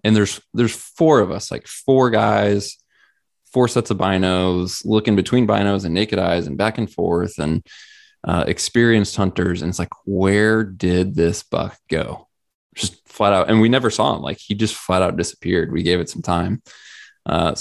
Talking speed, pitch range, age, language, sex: 185 wpm, 90-105 Hz, 20-39, English, male